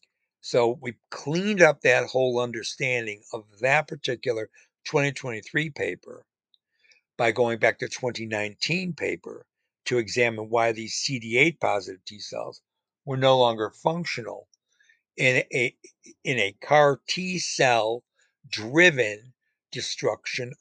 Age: 60-79